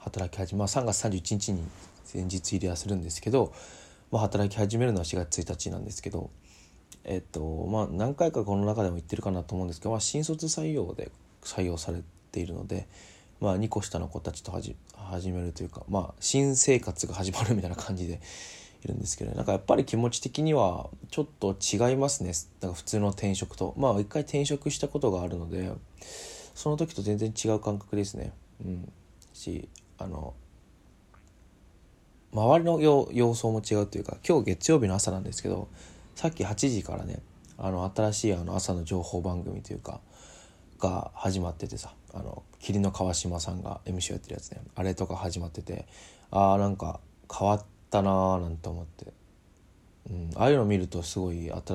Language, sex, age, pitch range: Japanese, male, 20-39, 90-105 Hz